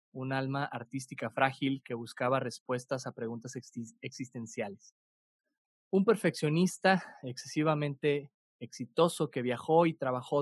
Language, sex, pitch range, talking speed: Spanish, male, 125-155 Hz, 105 wpm